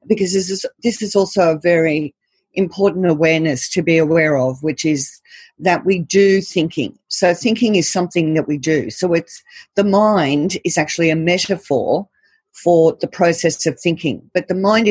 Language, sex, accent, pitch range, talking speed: English, female, Australian, 150-185 Hz, 175 wpm